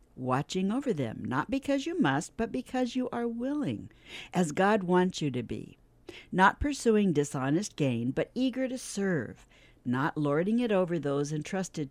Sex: female